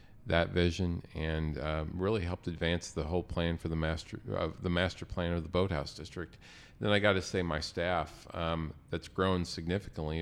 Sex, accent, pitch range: male, American, 80-95 Hz